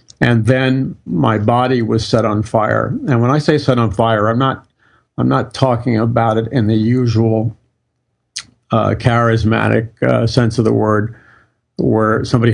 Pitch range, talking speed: 110-125 Hz, 165 wpm